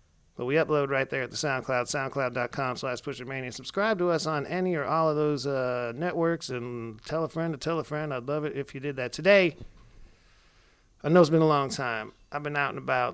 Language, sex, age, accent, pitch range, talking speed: English, male, 40-59, American, 125-155 Hz, 230 wpm